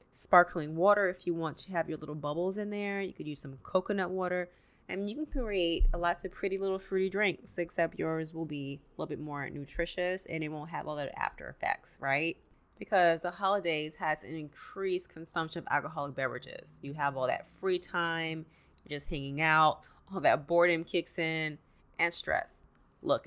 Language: English